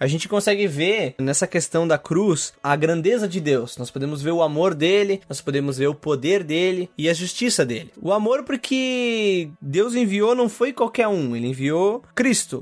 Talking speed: 190 wpm